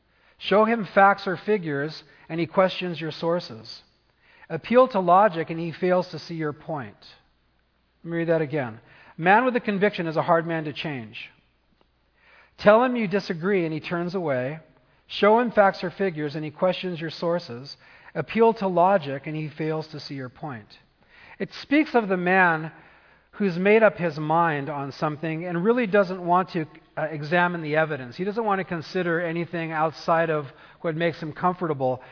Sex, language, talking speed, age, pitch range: male, English, 180 wpm, 40-59, 150-180 Hz